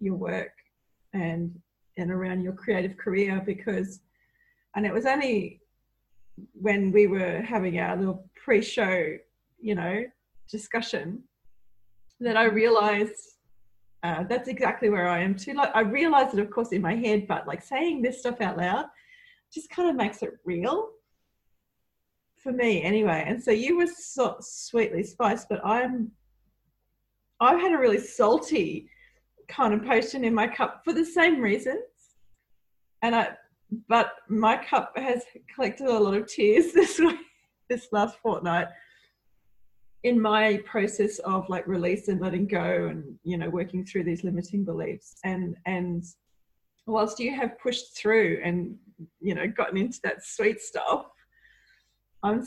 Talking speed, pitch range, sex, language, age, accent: 150 wpm, 185-245 Hz, female, English, 30-49, Australian